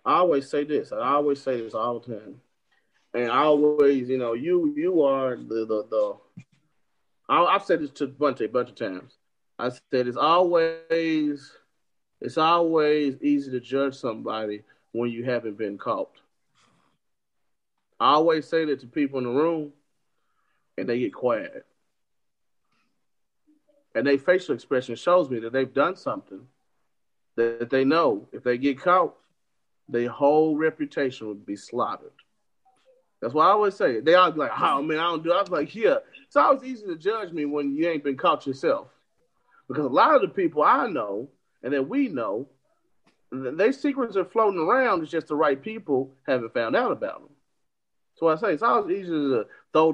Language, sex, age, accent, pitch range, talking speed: English, male, 30-49, American, 130-185 Hz, 185 wpm